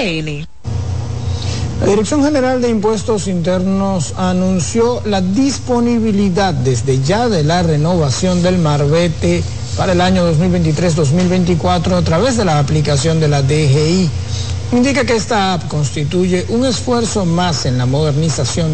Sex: male